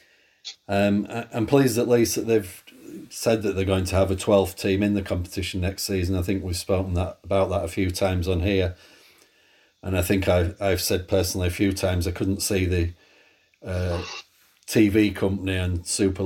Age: 40-59